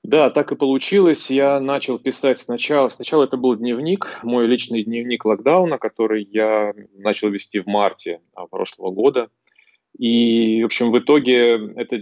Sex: male